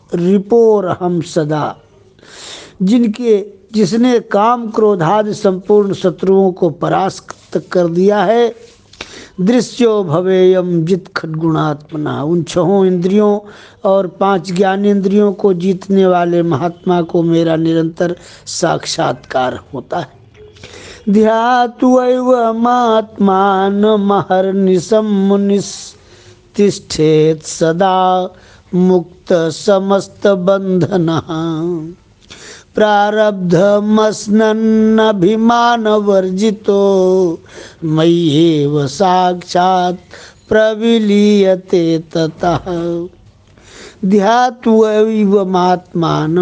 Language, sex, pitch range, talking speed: Hindi, male, 165-210 Hz, 65 wpm